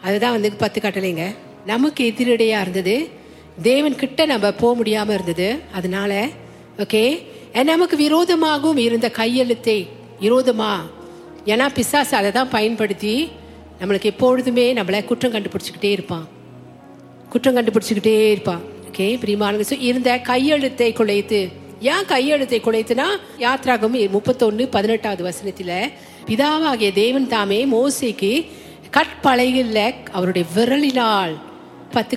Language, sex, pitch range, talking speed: Tamil, female, 200-255 Hz, 60 wpm